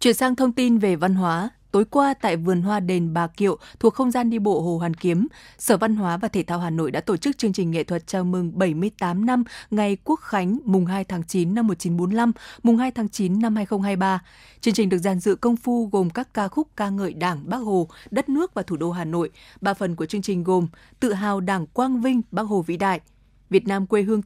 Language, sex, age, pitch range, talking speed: Vietnamese, female, 20-39, 185-225 Hz, 245 wpm